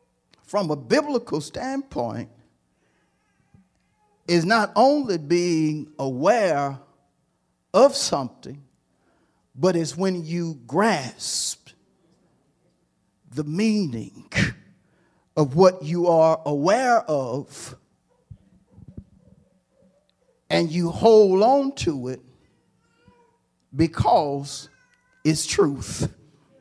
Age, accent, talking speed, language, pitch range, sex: 50-69, American, 75 wpm, English, 140-190 Hz, male